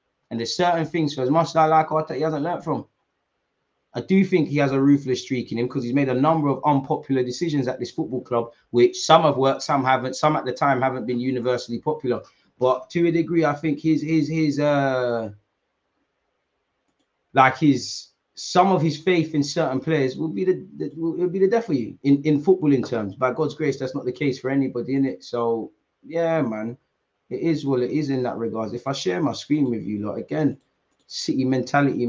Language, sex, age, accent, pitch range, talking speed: English, male, 20-39, British, 125-150 Hz, 220 wpm